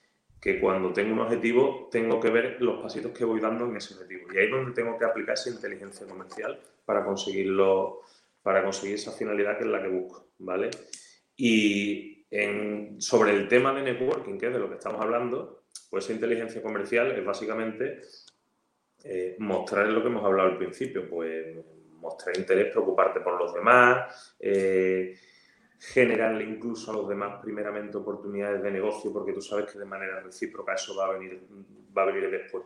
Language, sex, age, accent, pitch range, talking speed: Spanish, male, 30-49, Spanish, 95-115 Hz, 175 wpm